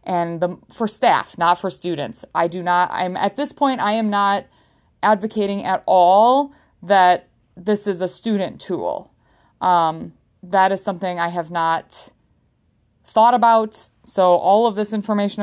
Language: English